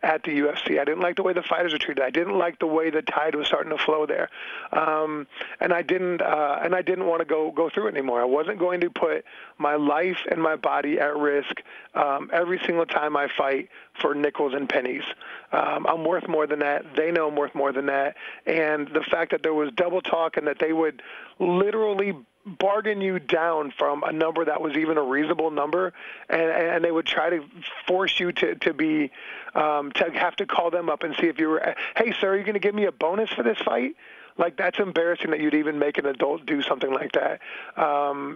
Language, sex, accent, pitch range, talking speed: Italian, male, American, 150-180 Hz, 235 wpm